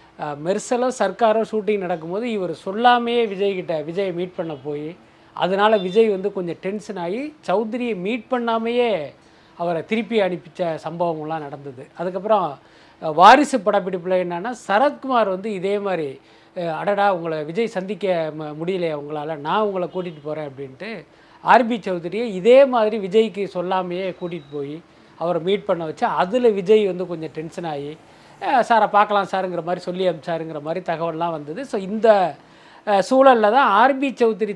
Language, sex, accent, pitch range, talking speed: Tamil, male, native, 170-225 Hz, 135 wpm